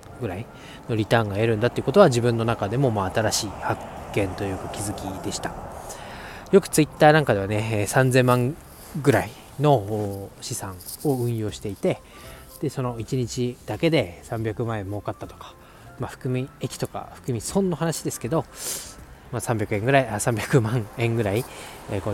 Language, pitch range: Japanese, 105-135 Hz